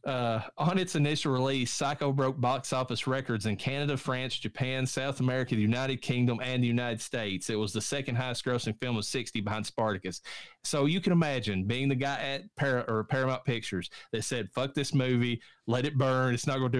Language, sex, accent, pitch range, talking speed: English, male, American, 110-140 Hz, 200 wpm